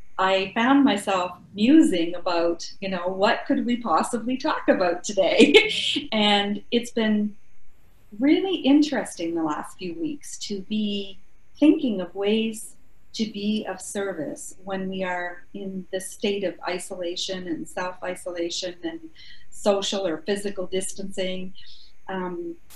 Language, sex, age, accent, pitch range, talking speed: English, female, 40-59, American, 185-235 Hz, 125 wpm